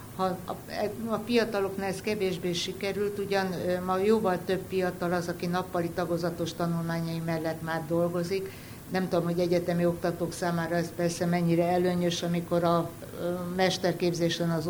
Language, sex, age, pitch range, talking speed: Hungarian, female, 60-79, 160-180 Hz, 135 wpm